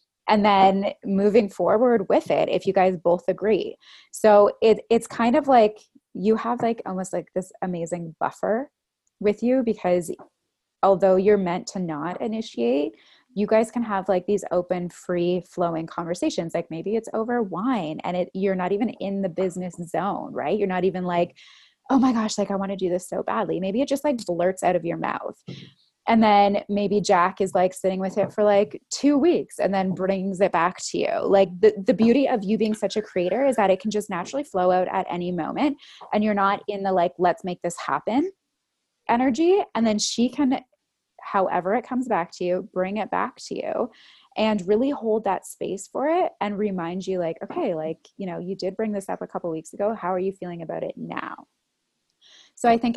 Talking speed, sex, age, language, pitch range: 210 wpm, female, 20-39, English, 180-225 Hz